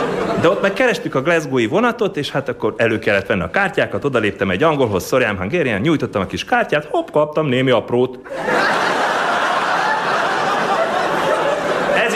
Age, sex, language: 30-49, male, Hungarian